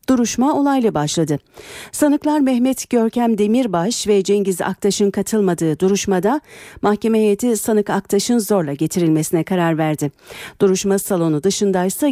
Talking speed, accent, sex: 115 wpm, native, female